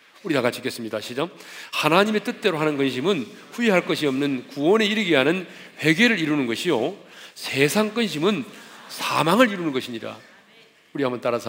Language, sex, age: Korean, male, 40-59